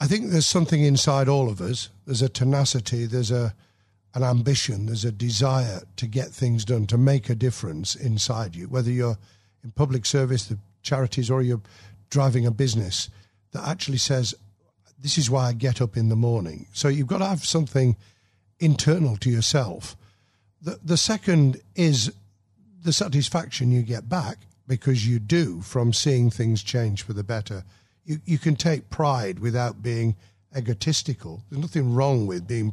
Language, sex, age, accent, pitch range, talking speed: English, male, 50-69, British, 110-140 Hz, 170 wpm